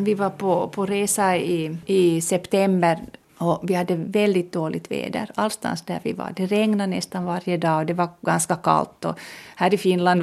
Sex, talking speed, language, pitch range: female, 190 wpm, Swedish, 180-230 Hz